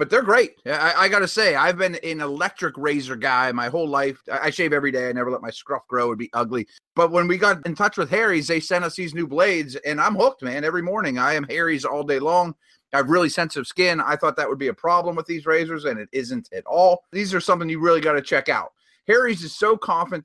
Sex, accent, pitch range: male, American, 135-180 Hz